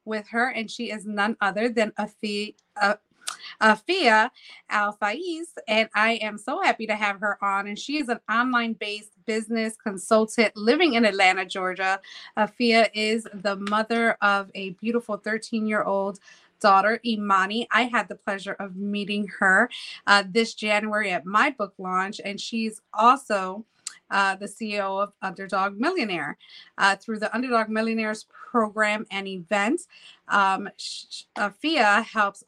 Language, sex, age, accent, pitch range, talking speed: English, female, 20-39, American, 200-230 Hz, 140 wpm